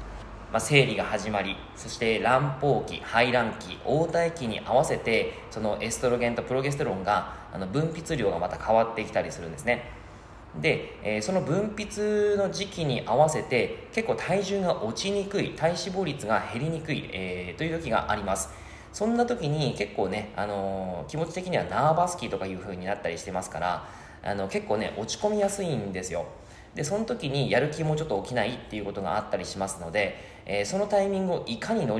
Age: 20-39